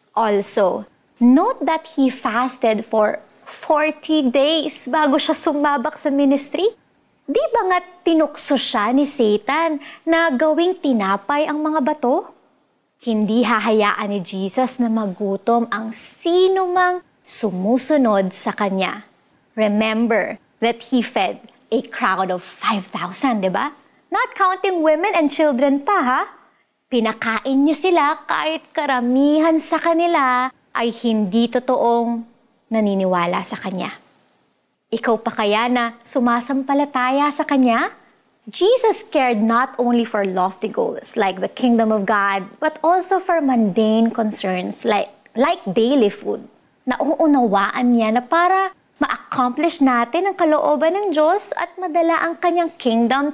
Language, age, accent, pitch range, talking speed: Filipino, 20-39, native, 225-315 Hz, 125 wpm